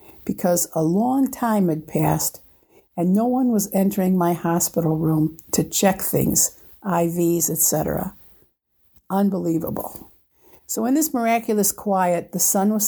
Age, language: 60-79, English